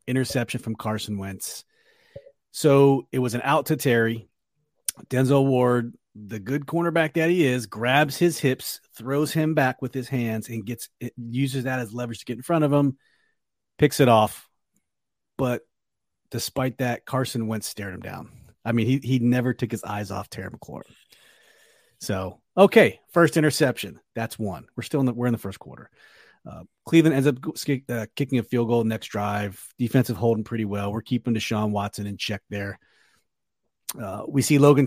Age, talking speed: 30-49, 180 wpm